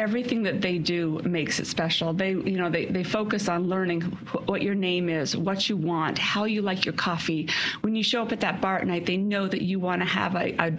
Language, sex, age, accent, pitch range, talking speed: English, female, 40-59, American, 175-210 Hz, 255 wpm